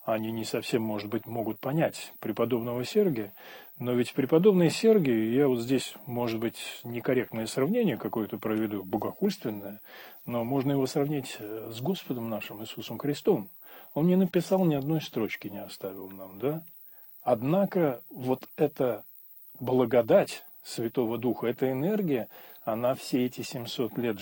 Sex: male